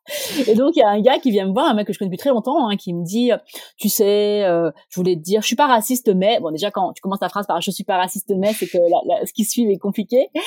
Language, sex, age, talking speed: French, female, 30-49, 325 wpm